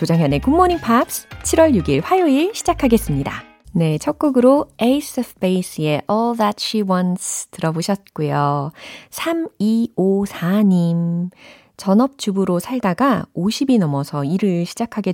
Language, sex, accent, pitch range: Korean, female, native, 160-230 Hz